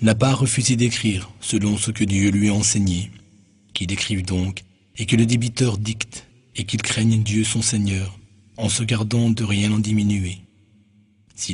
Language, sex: French, male